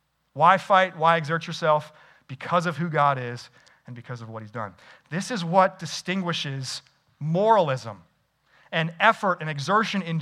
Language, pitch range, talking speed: English, 165-230 Hz, 155 wpm